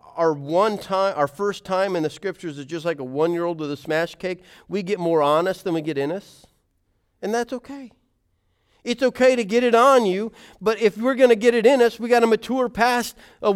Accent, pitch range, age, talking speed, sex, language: American, 135-220 Hz, 40-59, 235 wpm, male, English